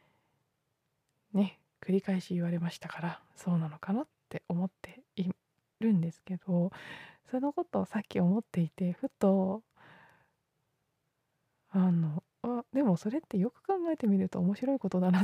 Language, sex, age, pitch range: Japanese, female, 20-39, 160-200 Hz